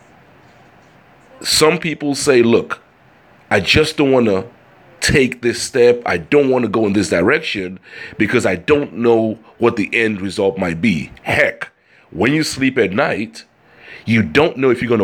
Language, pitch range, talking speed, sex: English, 100-130 Hz, 170 wpm, male